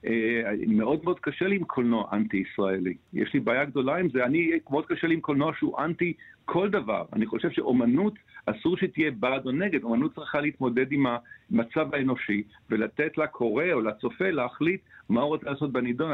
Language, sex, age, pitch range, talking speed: Hebrew, male, 50-69, 120-165 Hz, 175 wpm